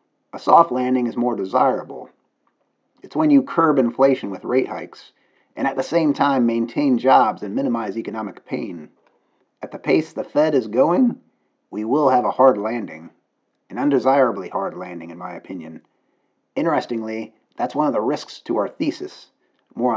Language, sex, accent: English, male, American